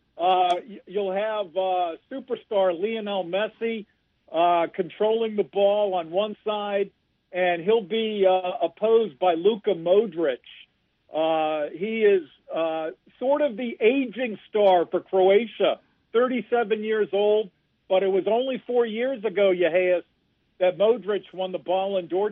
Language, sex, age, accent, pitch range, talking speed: English, male, 50-69, American, 170-210 Hz, 135 wpm